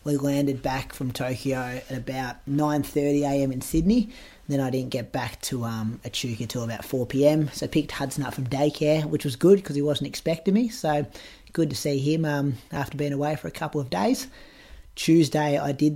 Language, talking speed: English, 200 wpm